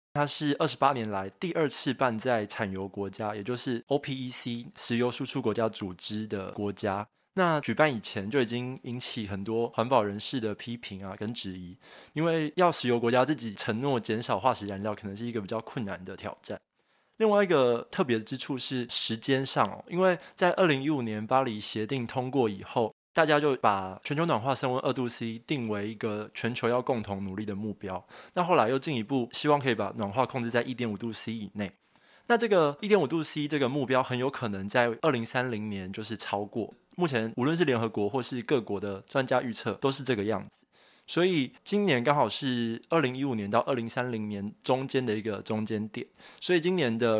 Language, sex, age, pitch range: Chinese, male, 20-39, 110-135 Hz